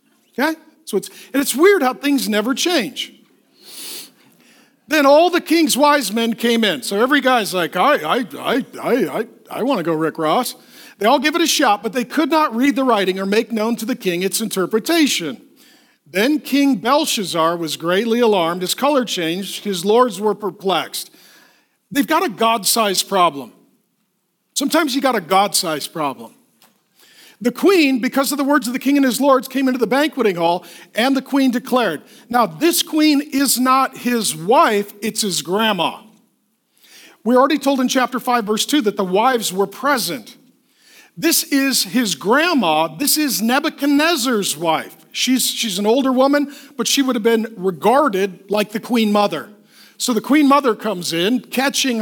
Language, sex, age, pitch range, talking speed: English, male, 50-69, 205-275 Hz, 170 wpm